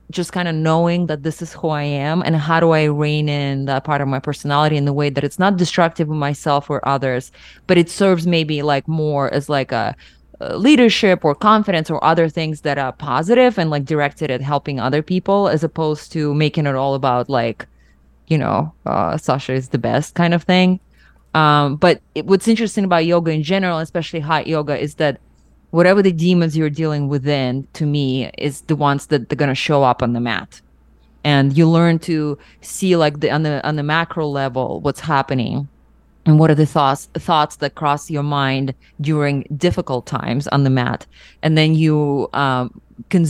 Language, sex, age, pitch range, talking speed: English, female, 20-39, 140-165 Hz, 200 wpm